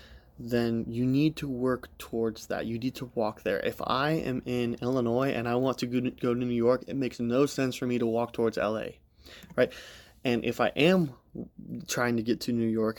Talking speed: 210 wpm